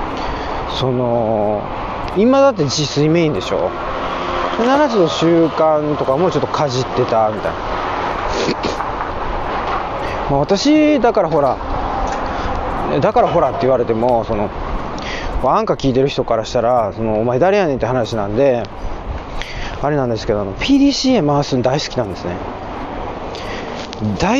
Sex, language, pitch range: male, Japanese, 110-175 Hz